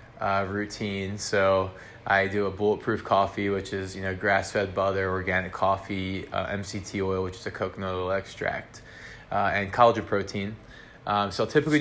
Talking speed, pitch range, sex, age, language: 185 wpm, 100-110 Hz, male, 20-39, English